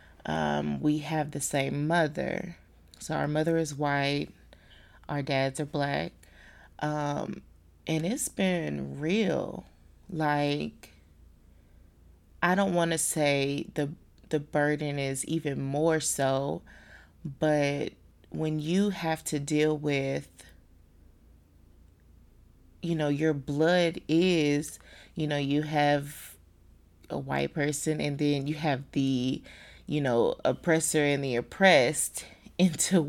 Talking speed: 115 wpm